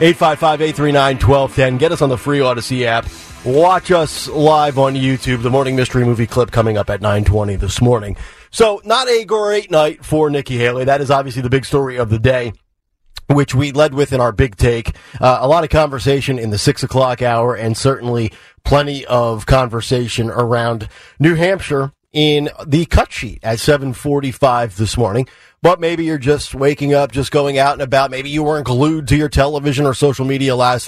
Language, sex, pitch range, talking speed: English, male, 120-145 Hz, 200 wpm